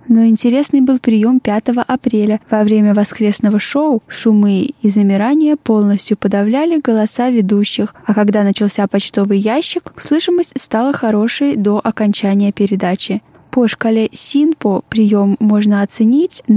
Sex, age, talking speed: female, 20-39, 125 wpm